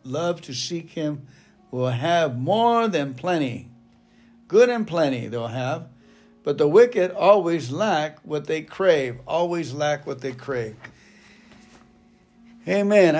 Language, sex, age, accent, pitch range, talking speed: English, male, 60-79, American, 135-195 Hz, 125 wpm